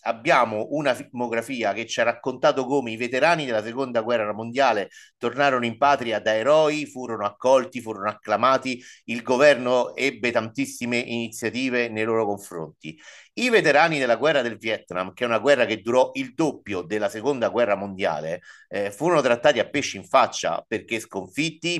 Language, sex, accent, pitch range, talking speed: Italian, male, native, 105-140 Hz, 160 wpm